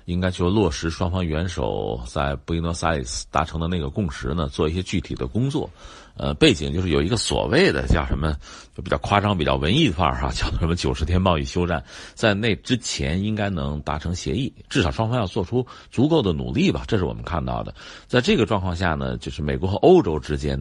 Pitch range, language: 70-105 Hz, Chinese